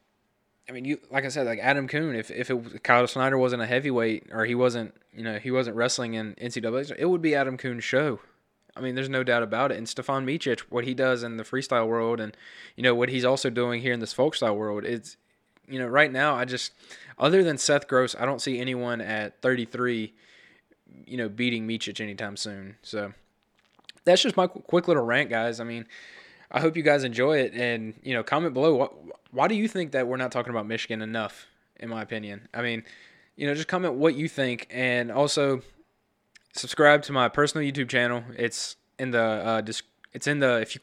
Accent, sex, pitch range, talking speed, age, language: American, male, 115-135 Hz, 220 wpm, 20-39, English